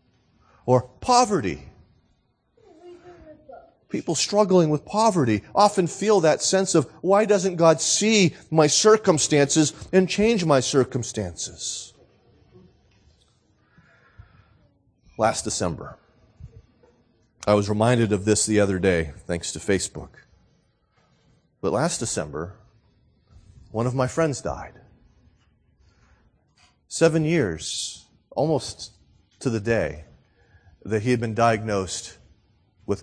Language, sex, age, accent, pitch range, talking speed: English, male, 30-49, American, 105-165 Hz, 100 wpm